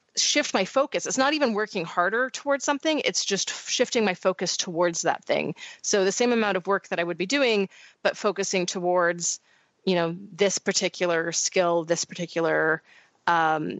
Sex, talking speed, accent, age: female, 175 wpm, American, 30-49